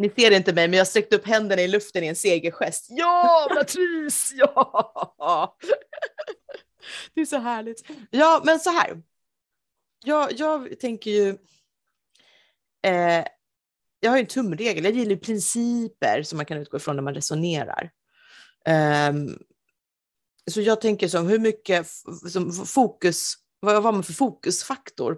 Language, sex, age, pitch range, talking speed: Swedish, female, 30-49, 150-220 Hz, 150 wpm